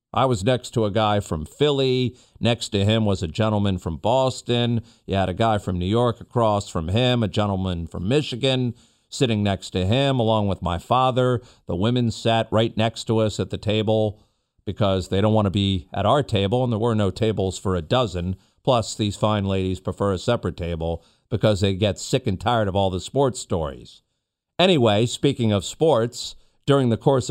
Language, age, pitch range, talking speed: English, 50-69, 100-125 Hz, 200 wpm